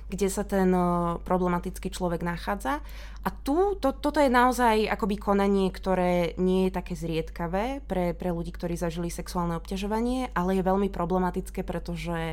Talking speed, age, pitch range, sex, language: 145 wpm, 20-39, 170-195 Hz, female, Slovak